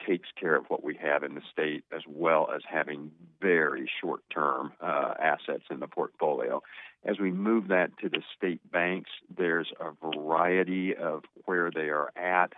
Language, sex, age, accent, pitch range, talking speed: English, male, 50-69, American, 75-90 Hz, 170 wpm